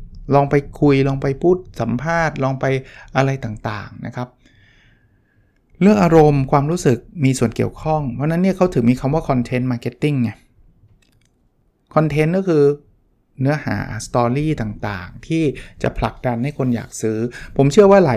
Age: 60-79